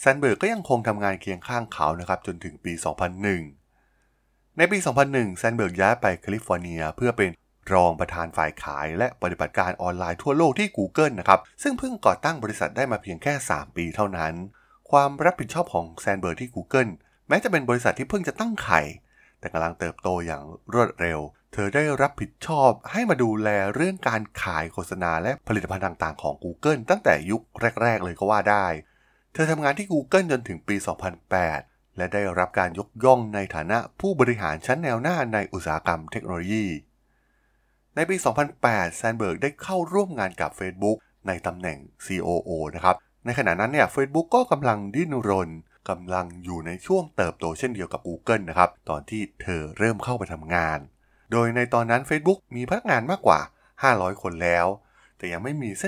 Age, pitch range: 20-39, 90-130 Hz